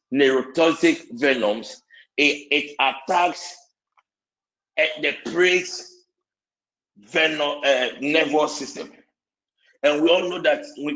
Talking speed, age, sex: 95 wpm, 50-69, male